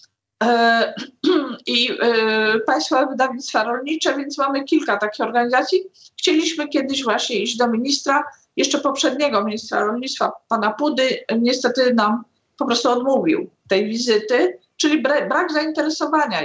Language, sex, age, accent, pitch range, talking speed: Polish, female, 50-69, native, 230-280 Hz, 115 wpm